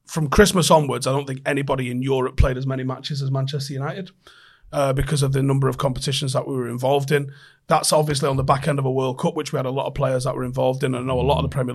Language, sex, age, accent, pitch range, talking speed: English, male, 30-49, British, 135-155 Hz, 285 wpm